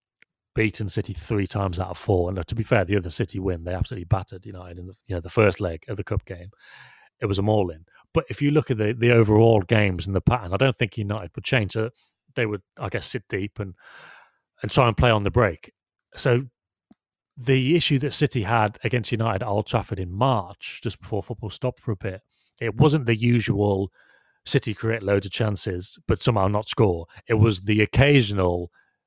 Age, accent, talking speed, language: 30-49, British, 215 wpm, English